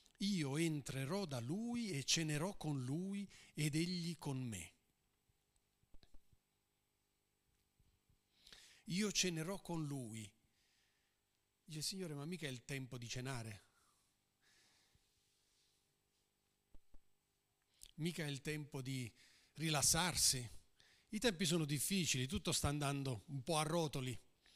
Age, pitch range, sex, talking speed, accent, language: 40-59, 125-170 Hz, male, 105 wpm, native, Italian